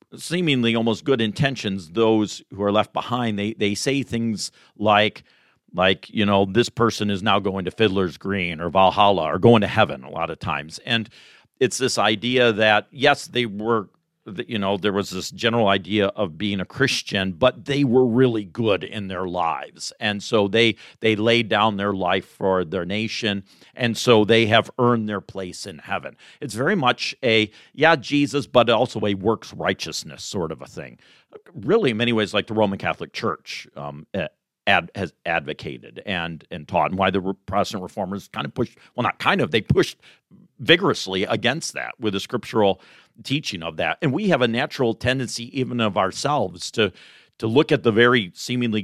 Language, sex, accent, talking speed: English, male, American, 185 wpm